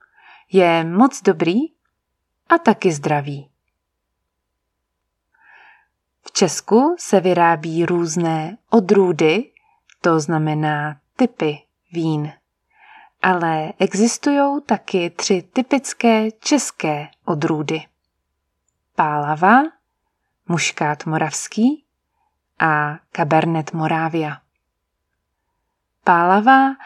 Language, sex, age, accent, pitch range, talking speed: English, female, 20-39, Czech, 155-220 Hz, 65 wpm